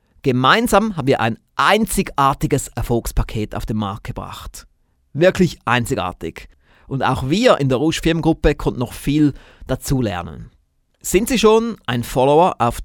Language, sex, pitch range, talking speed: German, male, 110-155 Hz, 130 wpm